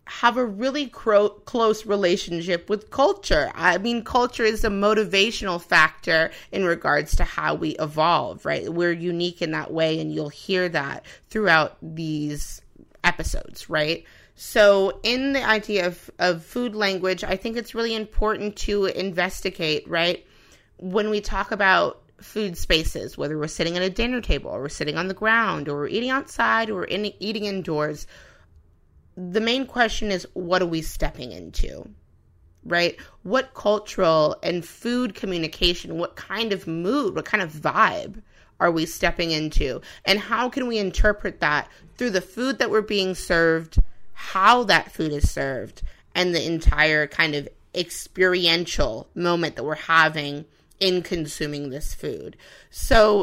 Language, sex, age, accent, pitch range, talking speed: English, female, 30-49, American, 165-215 Hz, 155 wpm